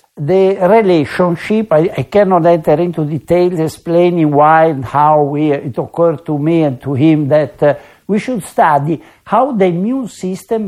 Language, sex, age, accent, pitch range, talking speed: English, male, 60-79, Italian, 150-195 Hz, 165 wpm